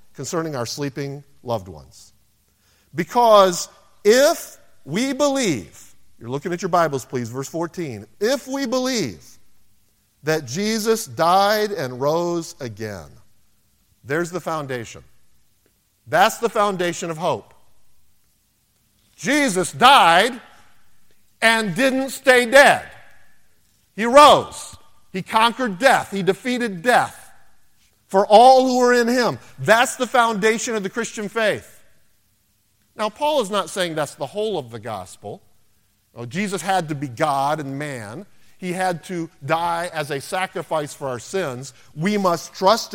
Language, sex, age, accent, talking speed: English, male, 50-69, American, 130 wpm